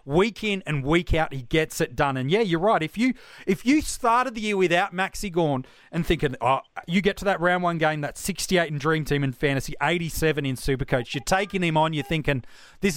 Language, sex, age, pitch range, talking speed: English, male, 30-49, 155-205 Hz, 230 wpm